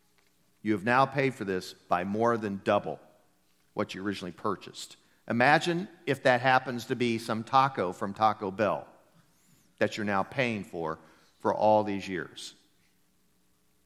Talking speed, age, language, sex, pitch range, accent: 145 wpm, 50-69, English, male, 100-135 Hz, American